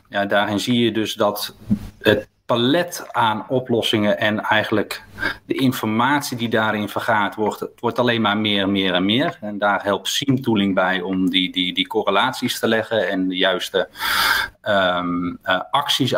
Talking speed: 165 wpm